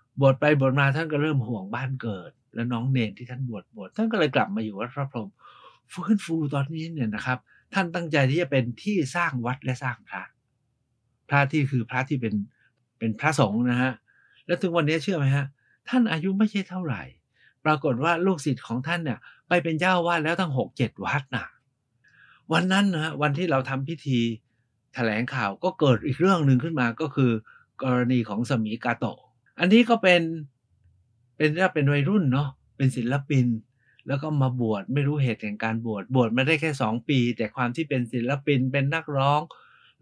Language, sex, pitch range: Thai, male, 120-160 Hz